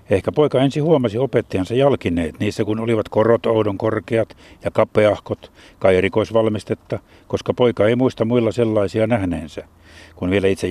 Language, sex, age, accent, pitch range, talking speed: Finnish, male, 60-79, native, 100-120 Hz, 145 wpm